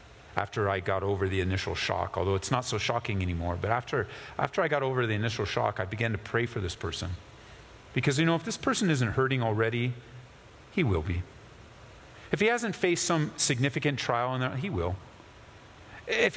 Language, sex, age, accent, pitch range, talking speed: English, male, 40-59, American, 110-145 Hz, 190 wpm